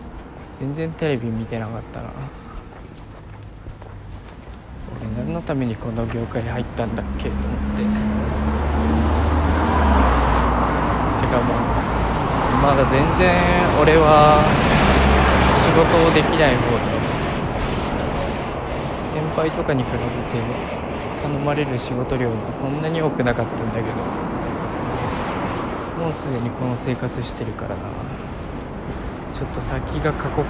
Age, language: 20-39, Japanese